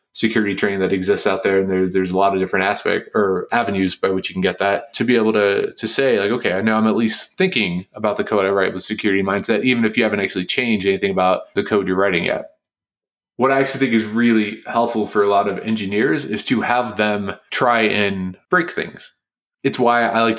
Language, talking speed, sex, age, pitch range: English, 240 wpm, male, 20-39, 100-120 Hz